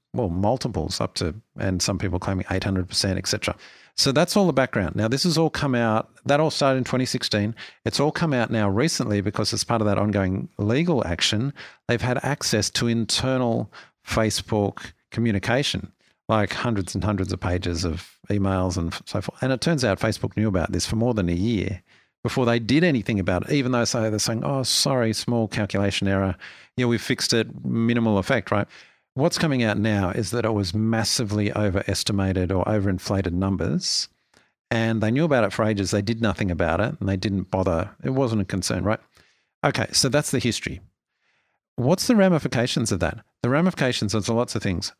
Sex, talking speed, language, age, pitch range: male, 195 wpm, English, 50-69, 100-125 Hz